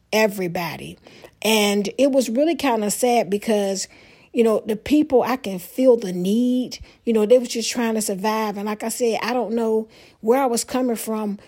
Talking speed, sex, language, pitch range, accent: 200 wpm, female, English, 195-225 Hz, American